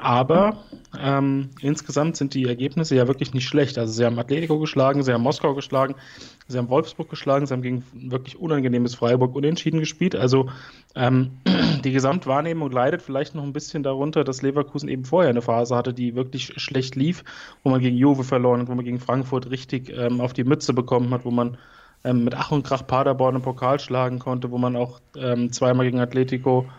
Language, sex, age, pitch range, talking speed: German, male, 30-49, 125-140 Hz, 195 wpm